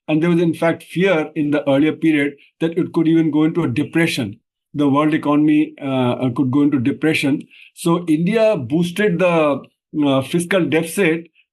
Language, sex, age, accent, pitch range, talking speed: English, male, 60-79, Indian, 140-165 Hz, 170 wpm